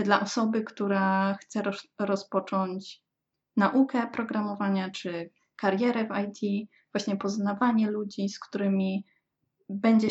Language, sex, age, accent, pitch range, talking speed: Polish, female, 20-39, native, 200-225 Hz, 105 wpm